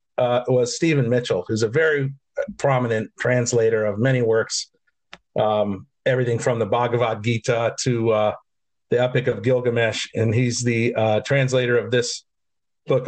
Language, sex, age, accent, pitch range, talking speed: English, male, 50-69, American, 120-145 Hz, 145 wpm